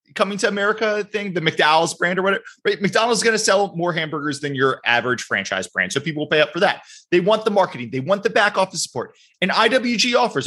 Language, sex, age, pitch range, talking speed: English, male, 20-39, 135-195 Hz, 240 wpm